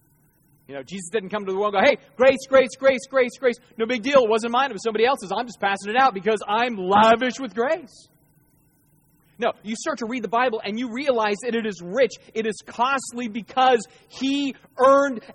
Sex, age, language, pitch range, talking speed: male, 30-49, English, 140-205 Hz, 220 wpm